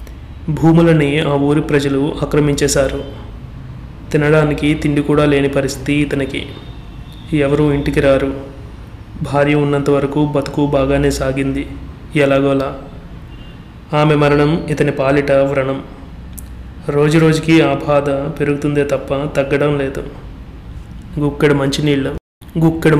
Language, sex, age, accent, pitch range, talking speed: Telugu, male, 30-49, native, 135-145 Hz, 95 wpm